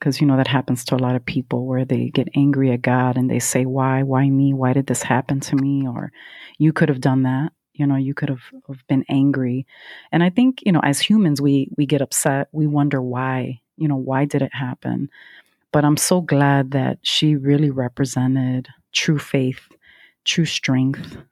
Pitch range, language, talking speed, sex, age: 135-150 Hz, English, 210 wpm, female, 30-49